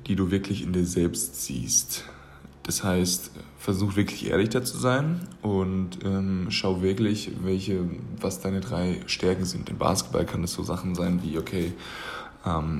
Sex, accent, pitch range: male, German, 85-95 Hz